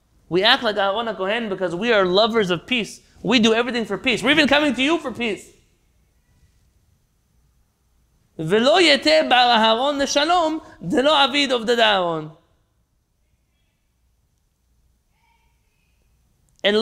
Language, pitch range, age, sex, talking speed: English, 155-255 Hz, 30-49, male, 85 wpm